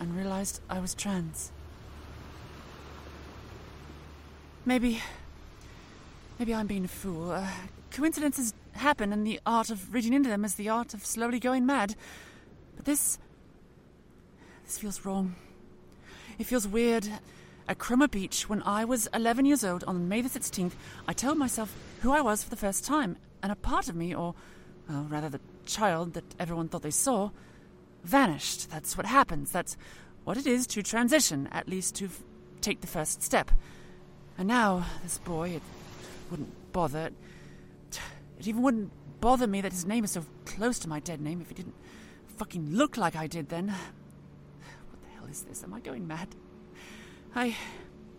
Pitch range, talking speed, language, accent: 170-235 Hz, 165 wpm, English, British